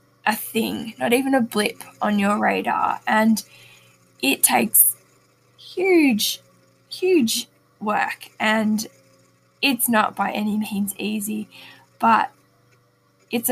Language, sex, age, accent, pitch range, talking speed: English, female, 10-29, Australian, 195-225 Hz, 105 wpm